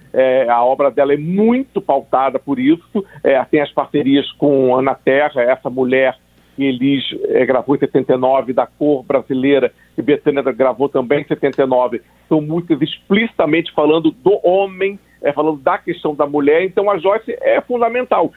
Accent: Brazilian